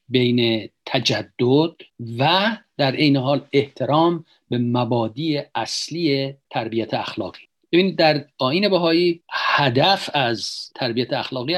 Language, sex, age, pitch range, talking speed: Persian, male, 50-69, 130-160 Hz, 105 wpm